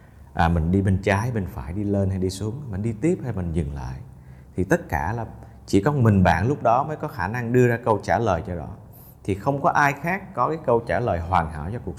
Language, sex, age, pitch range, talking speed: Vietnamese, male, 30-49, 85-115 Hz, 270 wpm